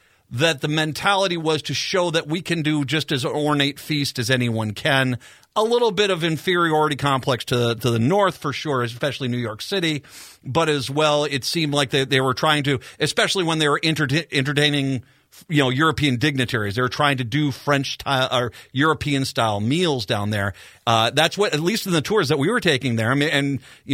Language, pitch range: English, 130-155 Hz